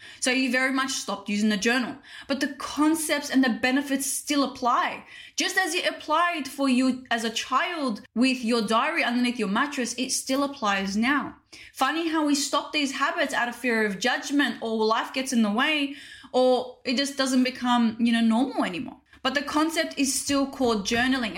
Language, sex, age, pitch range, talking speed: English, female, 10-29, 230-290 Hz, 190 wpm